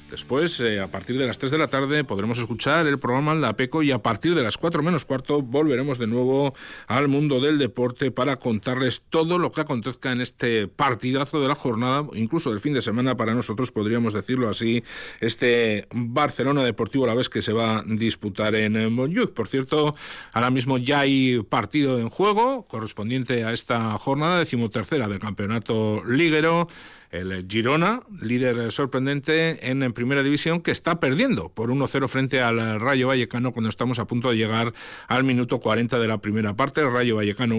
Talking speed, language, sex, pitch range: 180 wpm, Spanish, male, 115-140 Hz